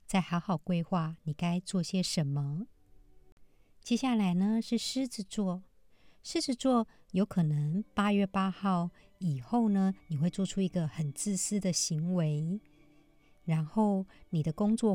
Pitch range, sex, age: 170-205 Hz, male, 50-69